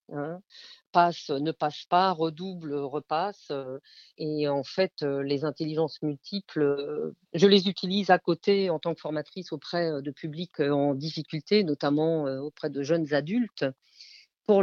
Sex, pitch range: female, 150-190 Hz